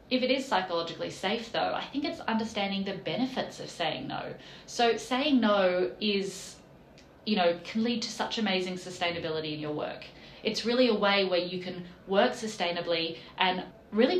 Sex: female